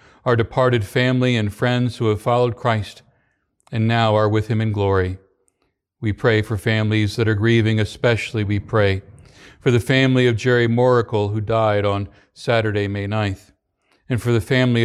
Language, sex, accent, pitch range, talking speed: English, male, American, 105-125 Hz, 170 wpm